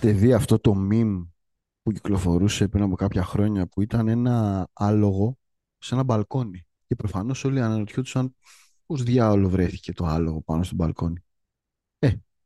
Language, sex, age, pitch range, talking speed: Greek, male, 30-49, 100-130 Hz, 145 wpm